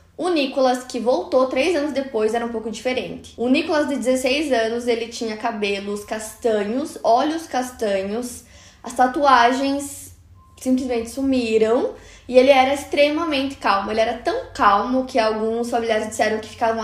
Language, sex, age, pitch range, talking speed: Portuguese, female, 10-29, 225-265 Hz, 145 wpm